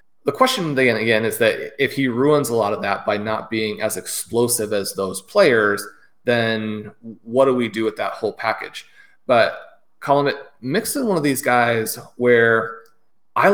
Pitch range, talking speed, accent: 110-145 Hz, 175 wpm, American